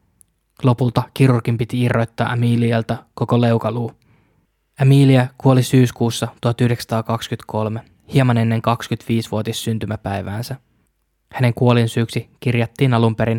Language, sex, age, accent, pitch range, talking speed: Finnish, male, 20-39, native, 115-130 Hz, 85 wpm